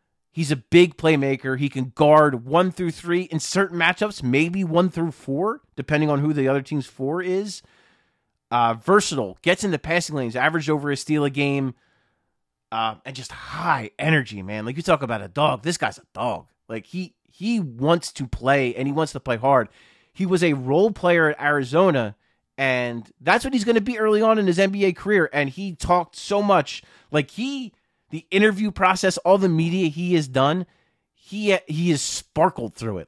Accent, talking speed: American, 195 wpm